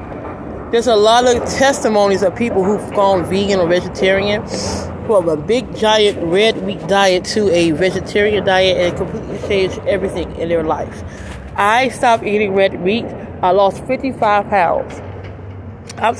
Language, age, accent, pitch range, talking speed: English, 20-39, American, 175-220 Hz, 150 wpm